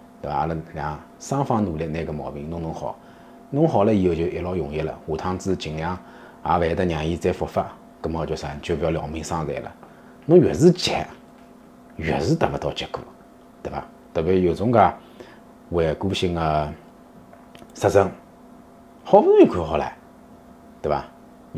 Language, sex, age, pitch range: Chinese, male, 30-49, 85-135 Hz